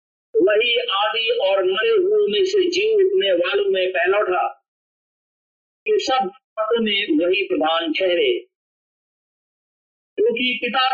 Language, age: Hindi, 50-69